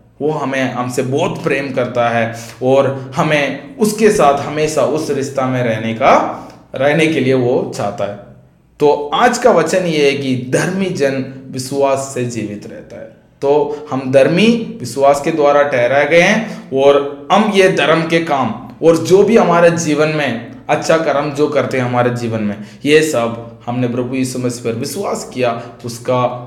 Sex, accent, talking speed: male, native, 170 wpm